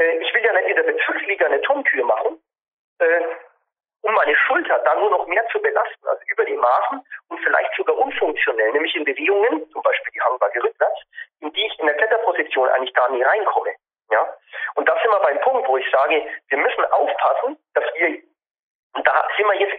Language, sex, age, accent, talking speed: German, male, 40-59, German, 195 wpm